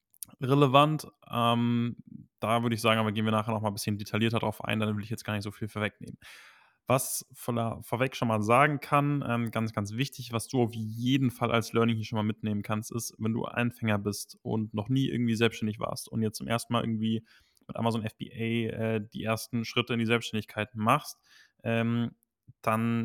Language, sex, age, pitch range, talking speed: German, male, 10-29, 110-120 Hz, 205 wpm